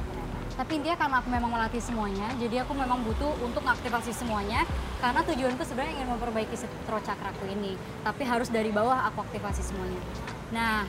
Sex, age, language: male, 20-39, Indonesian